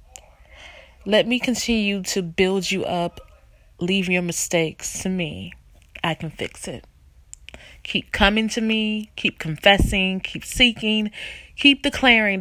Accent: American